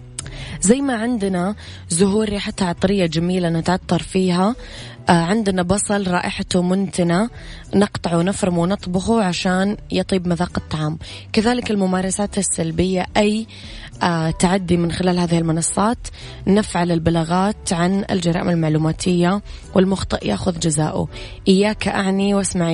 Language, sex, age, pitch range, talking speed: English, female, 20-39, 165-195 Hz, 105 wpm